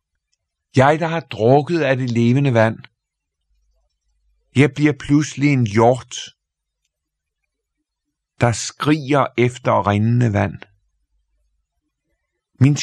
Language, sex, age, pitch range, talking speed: Danish, male, 50-69, 95-135 Hz, 90 wpm